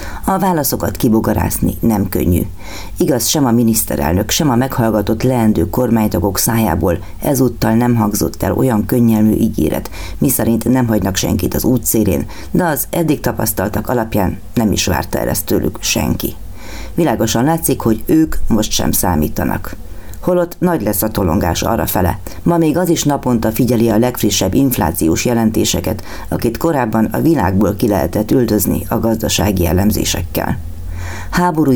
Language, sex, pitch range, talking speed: Hungarian, female, 95-120 Hz, 140 wpm